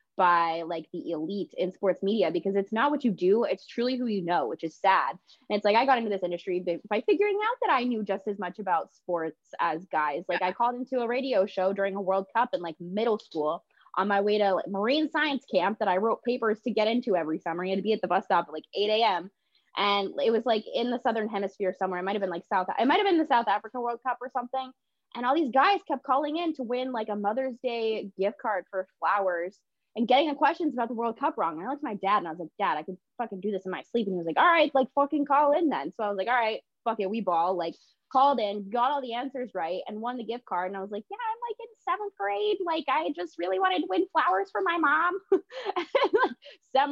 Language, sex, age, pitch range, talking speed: English, female, 20-39, 195-285 Hz, 270 wpm